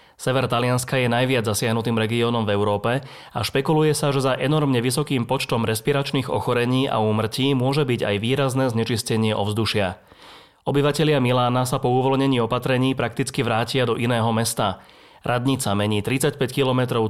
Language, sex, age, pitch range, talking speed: Slovak, male, 30-49, 115-135 Hz, 145 wpm